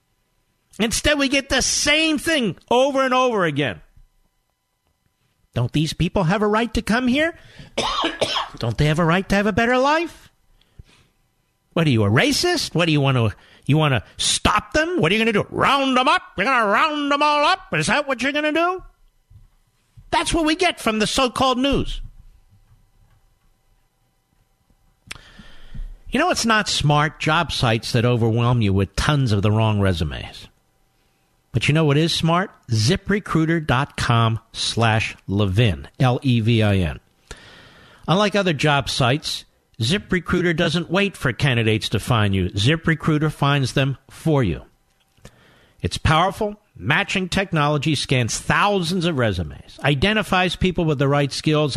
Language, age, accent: English, 50-69, American